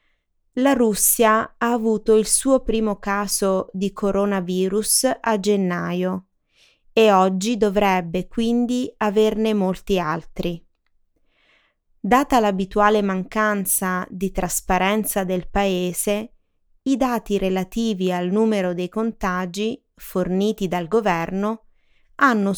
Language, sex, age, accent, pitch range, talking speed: Italian, female, 20-39, native, 190-230 Hz, 100 wpm